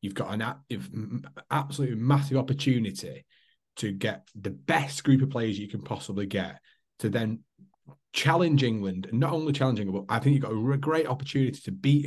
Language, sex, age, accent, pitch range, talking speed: English, male, 30-49, British, 105-140 Hz, 170 wpm